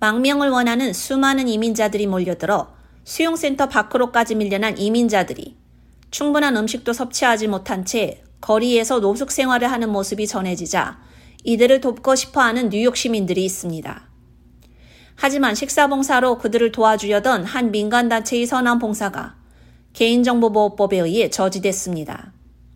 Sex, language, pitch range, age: female, Korean, 195-250 Hz, 30-49